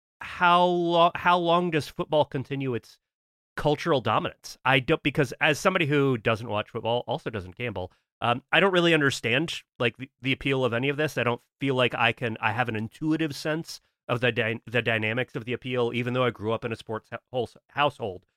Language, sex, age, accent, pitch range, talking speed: English, male, 30-49, American, 110-155 Hz, 210 wpm